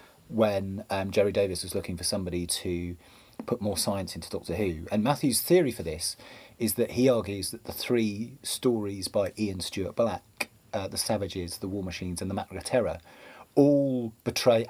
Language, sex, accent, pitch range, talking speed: English, male, British, 90-120 Hz, 180 wpm